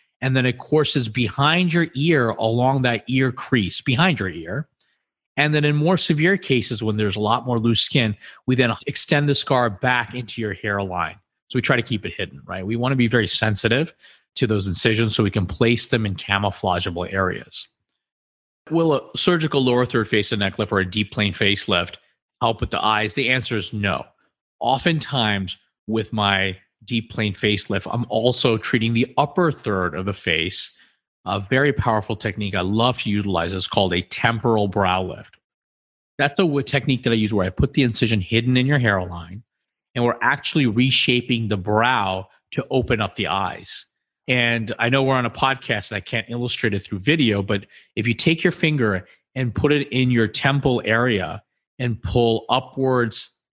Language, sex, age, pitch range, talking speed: English, male, 30-49, 100-130 Hz, 190 wpm